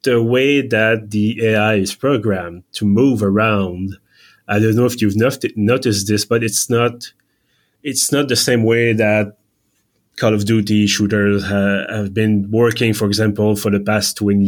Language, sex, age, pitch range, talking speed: English, male, 30-49, 105-120 Hz, 170 wpm